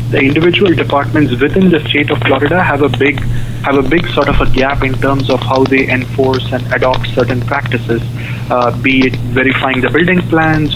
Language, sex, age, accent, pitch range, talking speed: English, male, 20-39, Indian, 120-140 Hz, 195 wpm